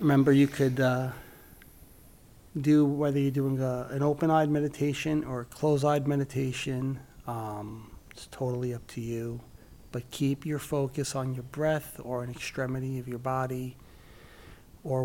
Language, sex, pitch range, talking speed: English, male, 125-145 Hz, 145 wpm